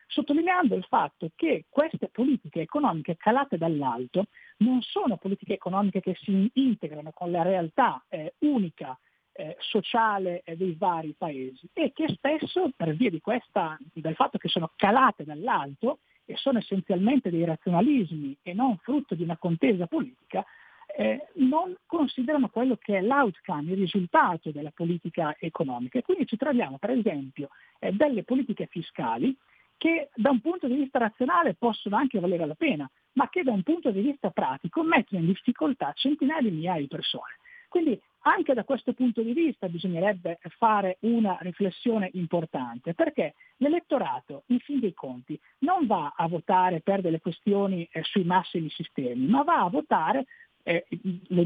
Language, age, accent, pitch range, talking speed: Italian, 50-69, native, 175-270 Hz, 160 wpm